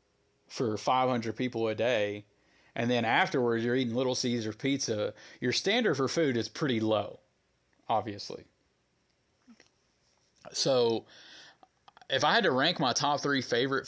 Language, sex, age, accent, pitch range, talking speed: English, male, 30-49, American, 110-135 Hz, 135 wpm